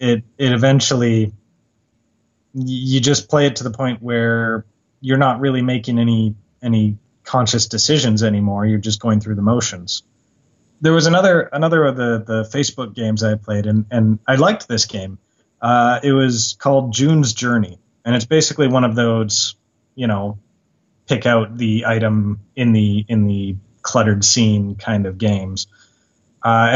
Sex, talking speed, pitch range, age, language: male, 160 wpm, 110-130 Hz, 30-49, English